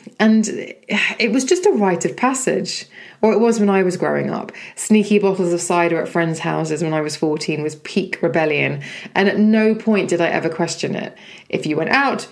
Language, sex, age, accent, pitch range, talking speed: English, female, 20-39, British, 160-200 Hz, 210 wpm